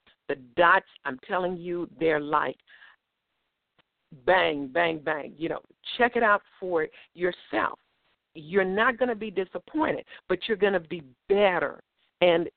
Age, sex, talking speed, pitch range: 50-69, female, 145 wpm, 170-205 Hz